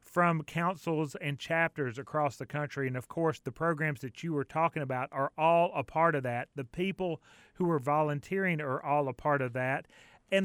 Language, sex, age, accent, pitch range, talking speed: English, male, 40-59, American, 145-175 Hz, 200 wpm